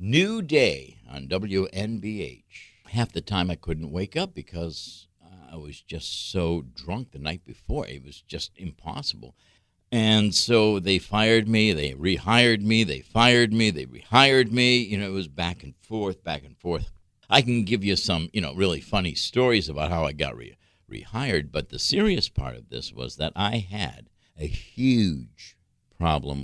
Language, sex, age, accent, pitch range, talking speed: English, male, 60-79, American, 80-110 Hz, 170 wpm